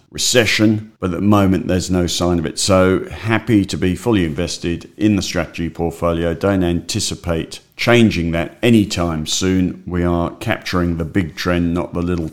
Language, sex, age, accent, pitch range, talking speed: English, male, 50-69, British, 90-105 Hz, 170 wpm